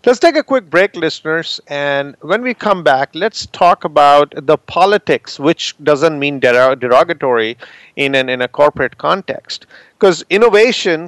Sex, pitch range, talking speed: male, 140-180 Hz, 150 wpm